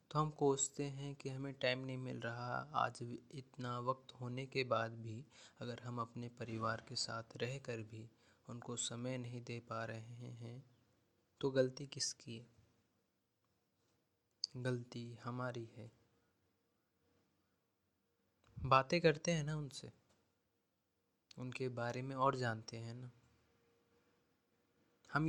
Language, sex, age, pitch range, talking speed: Hindi, male, 20-39, 115-135 Hz, 125 wpm